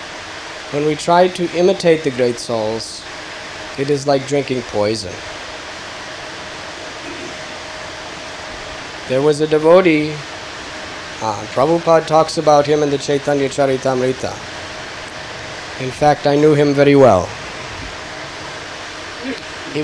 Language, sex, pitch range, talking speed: English, male, 145-180 Hz, 105 wpm